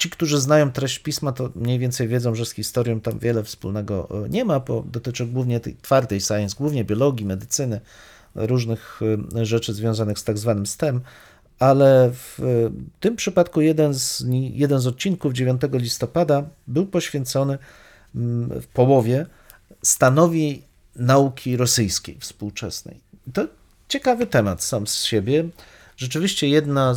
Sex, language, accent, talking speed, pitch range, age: male, Polish, native, 135 wpm, 110-135 Hz, 40-59